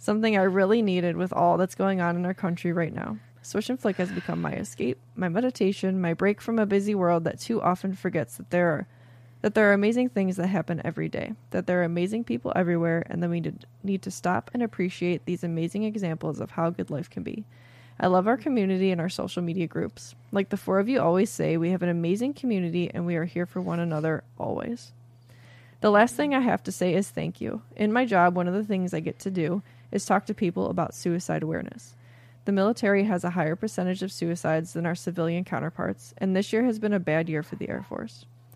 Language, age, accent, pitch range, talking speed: English, 20-39, American, 160-195 Hz, 230 wpm